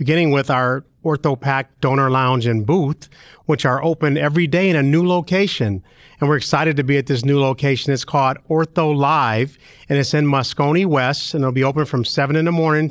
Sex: male